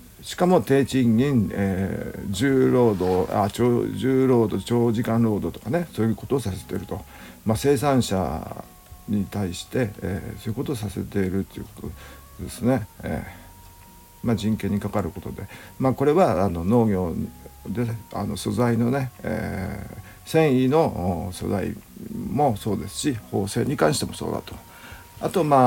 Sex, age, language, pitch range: male, 50-69, Japanese, 95-125 Hz